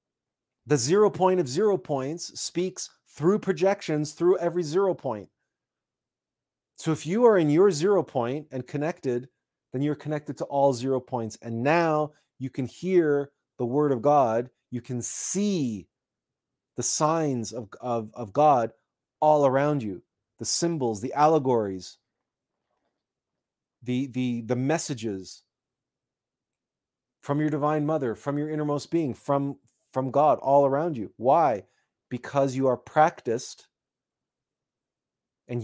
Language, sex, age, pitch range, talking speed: English, male, 30-49, 120-150 Hz, 135 wpm